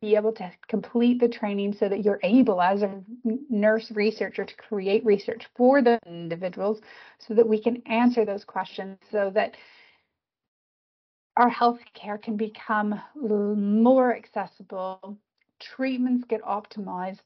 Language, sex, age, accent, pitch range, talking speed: English, female, 30-49, American, 205-245 Hz, 130 wpm